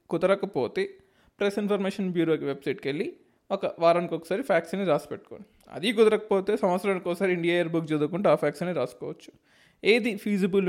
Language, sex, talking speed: Telugu, male, 135 wpm